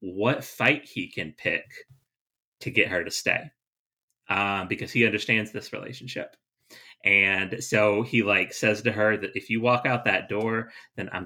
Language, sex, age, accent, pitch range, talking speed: English, male, 30-49, American, 95-120 Hz, 170 wpm